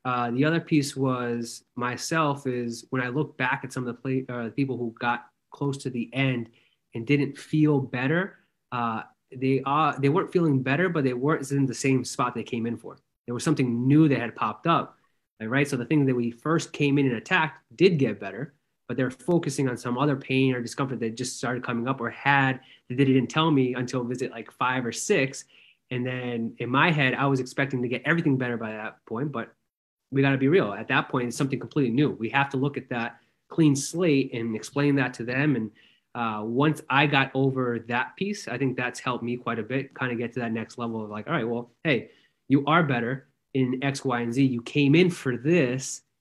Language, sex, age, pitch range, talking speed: English, male, 20-39, 120-140 Hz, 230 wpm